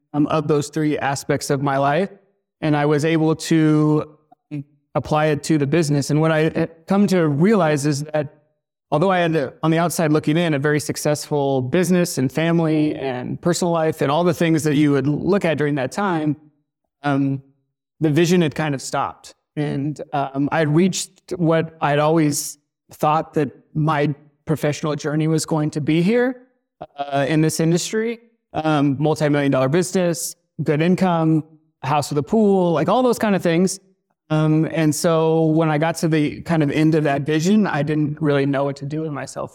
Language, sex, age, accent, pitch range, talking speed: English, male, 30-49, American, 140-165 Hz, 190 wpm